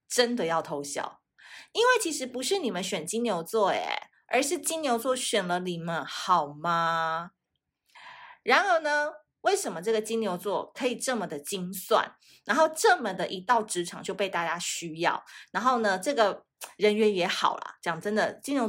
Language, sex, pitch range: Chinese, female, 180-255 Hz